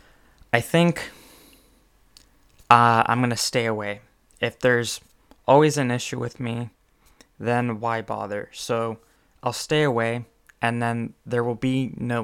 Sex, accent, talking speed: male, American, 130 wpm